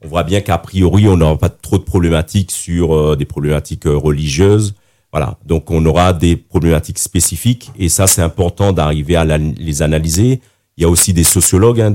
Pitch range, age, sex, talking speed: 80-100 Hz, 50-69, male, 185 wpm